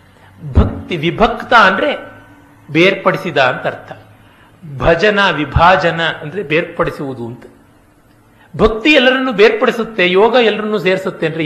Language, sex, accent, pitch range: Kannada, male, native, 145-225 Hz